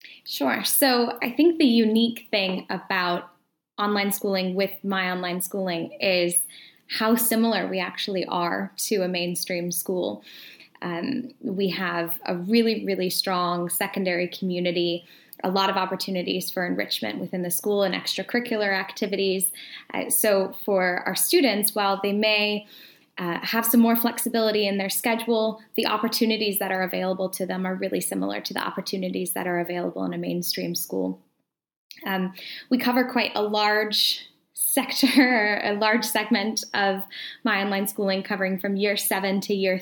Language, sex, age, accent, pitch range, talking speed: English, female, 10-29, American, 185-225 Hz, 150 wpm